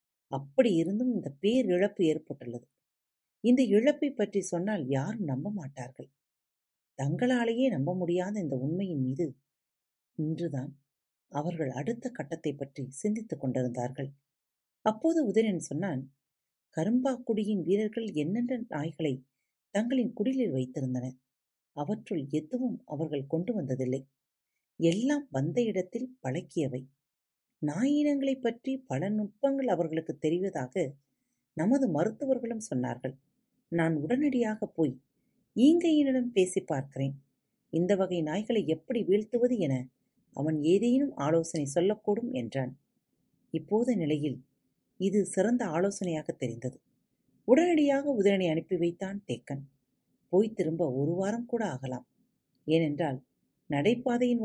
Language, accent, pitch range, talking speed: Tamil, native, 140-225 Hz, 100 wpm